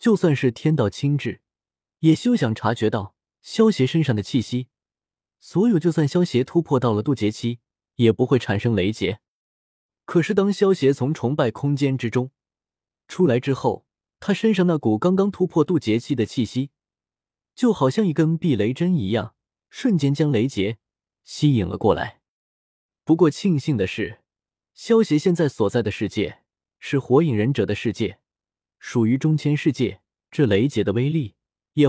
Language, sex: Chinese, male